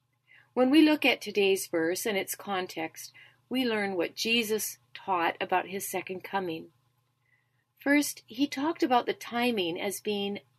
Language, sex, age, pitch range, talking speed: English, female, 40-59, 150-245 Hz, 145 wpm